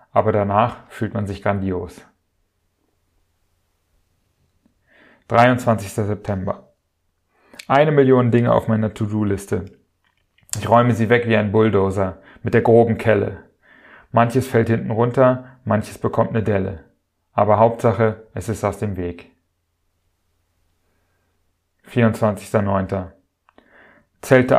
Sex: male